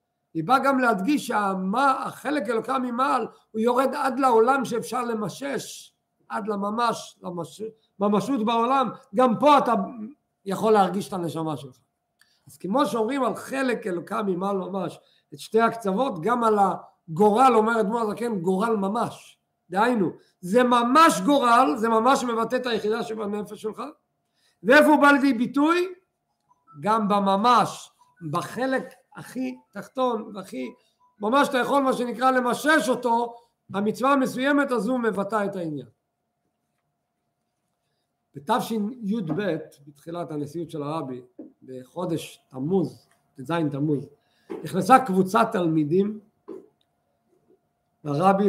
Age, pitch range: 50-69, 175-250 Hz